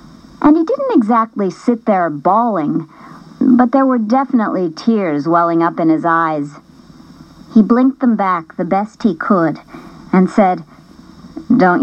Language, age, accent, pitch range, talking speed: English, 50-69, American, 180-255 Hz, 140 wpm